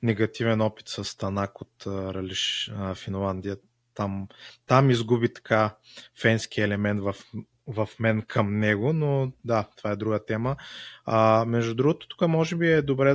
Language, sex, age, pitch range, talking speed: Bulgarian, male, 20-39, 105-120 Hz, 150 wpm